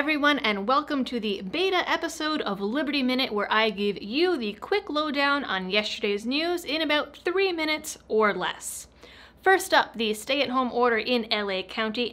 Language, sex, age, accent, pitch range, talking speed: English, female, 30-49, American, 205-295 Hz, 180 wpm